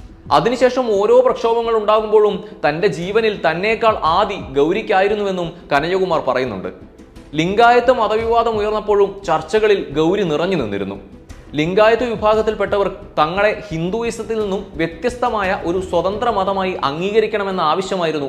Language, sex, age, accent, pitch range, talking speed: Malayalam, male, 20-39, native, 155-210 Hz, 90 wpm